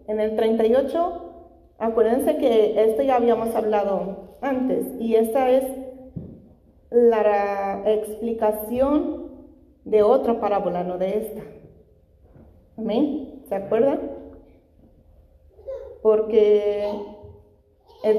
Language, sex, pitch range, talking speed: Spanish, female, 210-250 Hz, 85 wpm